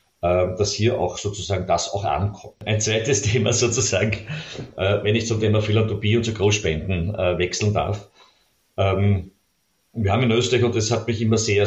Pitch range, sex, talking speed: 95-110 Hz, male, 160 wpm